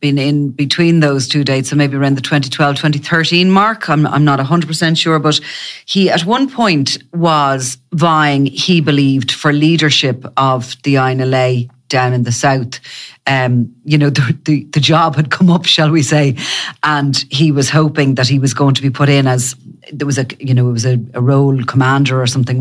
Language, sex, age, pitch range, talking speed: English, female, 40-59, 125-150 Hz, 195 wpm